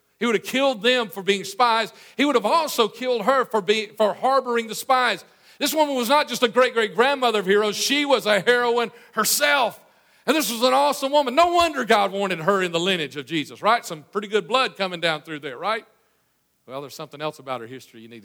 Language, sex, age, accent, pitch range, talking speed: English, male, 50-69, American, 170-220 Hz, 225 wpm